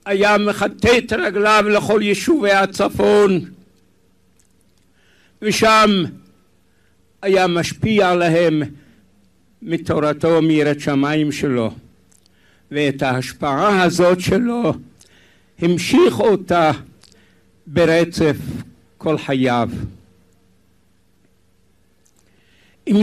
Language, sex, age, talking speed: Hebrew, male, 60-79, 65 wpm